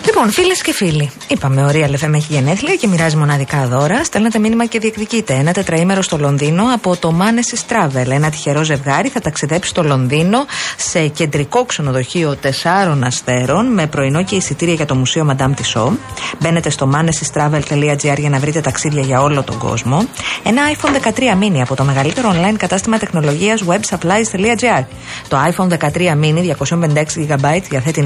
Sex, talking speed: female, 165 wpm